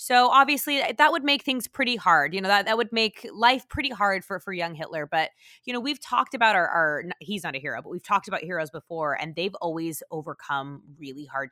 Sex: female